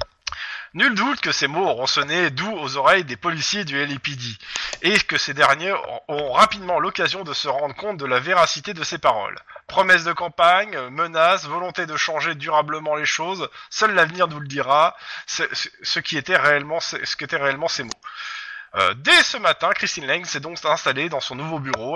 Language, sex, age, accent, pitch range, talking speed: French, male, 20-39, French, 145-195 Hz, 195 wpm